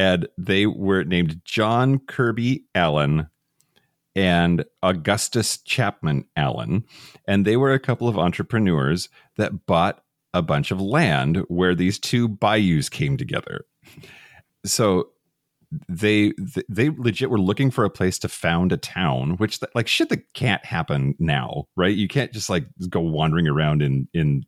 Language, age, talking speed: English, 40-59, 150 wpm